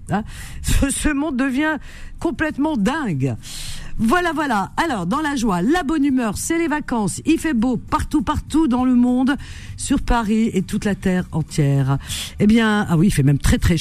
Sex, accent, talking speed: female, French, 180 wpm